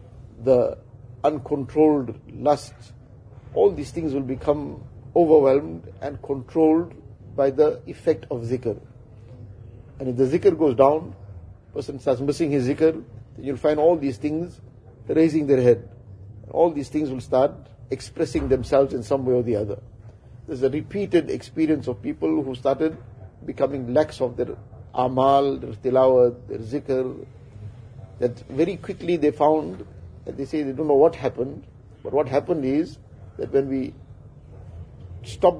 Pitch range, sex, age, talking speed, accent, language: 120-150 Hz, male, 50-69, 145 wpm, Indian, English